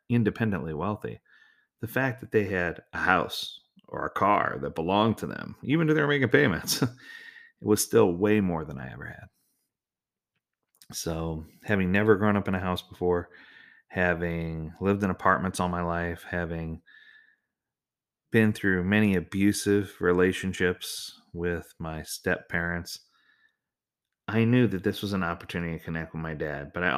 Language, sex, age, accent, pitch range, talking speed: English, male, 30-49, American, 85-120 Hz, 155 wpm